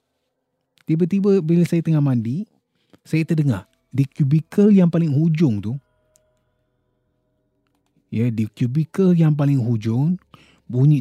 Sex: male